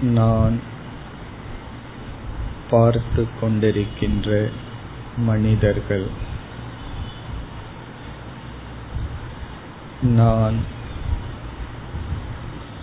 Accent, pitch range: native, 105-115 Hz